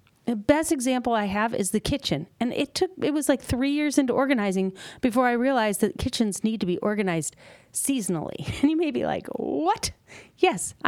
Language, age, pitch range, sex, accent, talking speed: English, 40-59, 185-265 Hz, female, American, 190 wpm